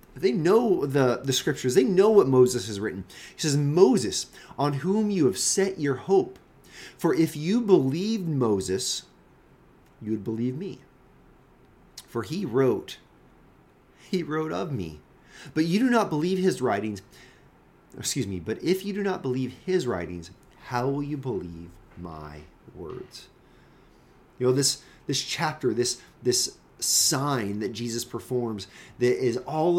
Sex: male